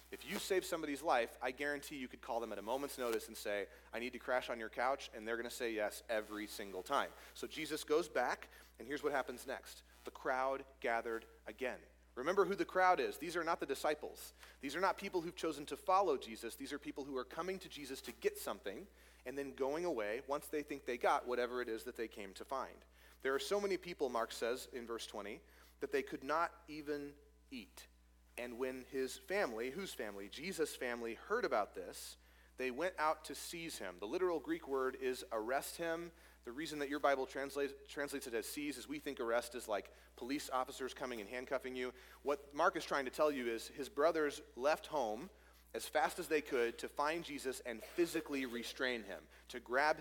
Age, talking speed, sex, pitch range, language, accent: 30-49, 215 wpm, male, 120-155 Hz, English, American